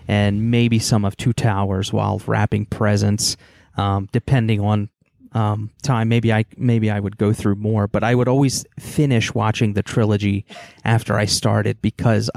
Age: 30-49